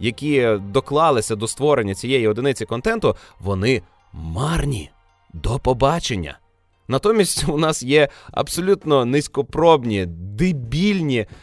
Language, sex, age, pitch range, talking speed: Russian, male, 20-39, 105-150 Hz, 95 wpm